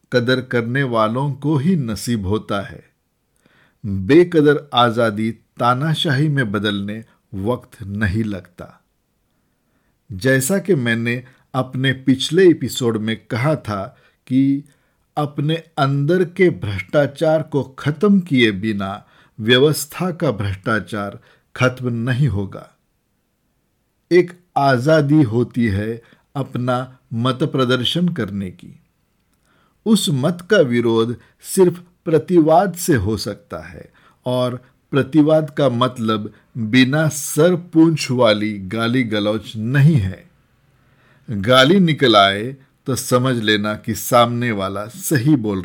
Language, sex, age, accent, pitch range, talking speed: Hindi, male, 50-69, native, 110-150 Hz, 105 wpm